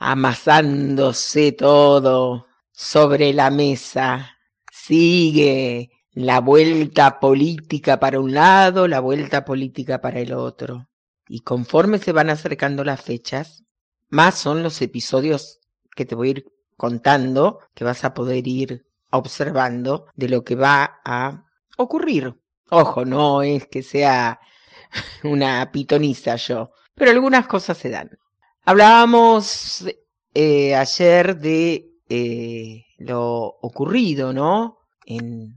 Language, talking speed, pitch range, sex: Spanish, 115 wpm, 130-160 Hz, female